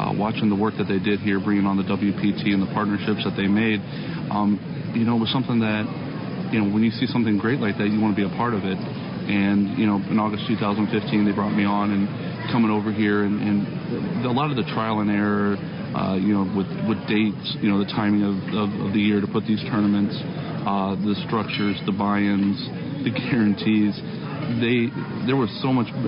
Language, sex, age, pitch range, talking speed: English, male, 40-59, 100-115 Hz, 225 wpm